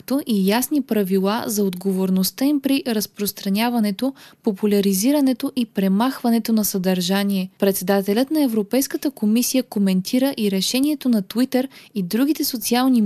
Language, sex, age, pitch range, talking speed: Bulgarian, female, 20-39, 200-255 Hz, 115 wpm